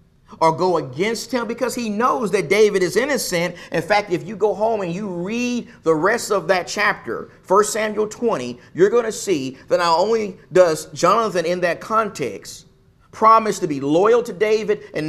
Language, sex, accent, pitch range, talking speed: English, male, American, 165-215 Hz, 185 wpm